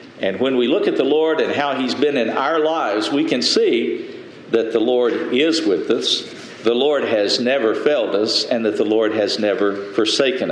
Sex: male